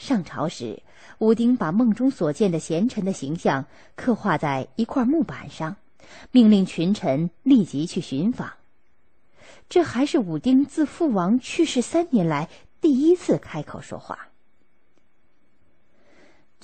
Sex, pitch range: female, 170-260 Hz